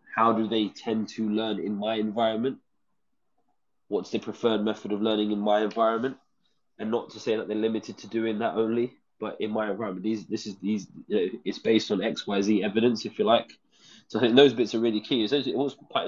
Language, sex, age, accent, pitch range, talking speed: English, male, 20-39, British, 105-115 Hz, 225 wpm